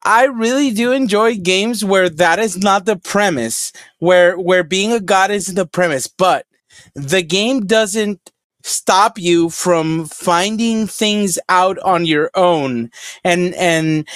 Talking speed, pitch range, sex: 145 wpm, 180-225 Hz, male